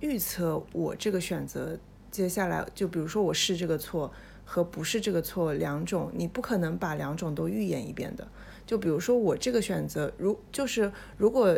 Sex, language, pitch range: female, Chinese, 165-220 Hz